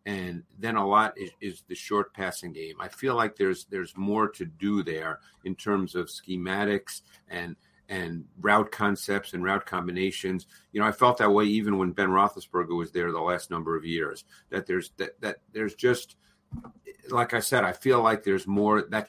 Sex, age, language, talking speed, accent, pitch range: male, 50-69, English, 195 wpm, American, 90-105 Hz